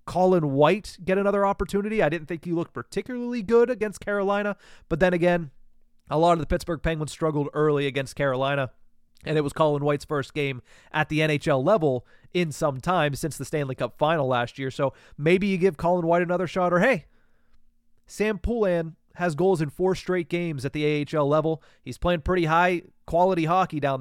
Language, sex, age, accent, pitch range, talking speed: English, male, 30-49, American, 145-180 Hz, 190 wpm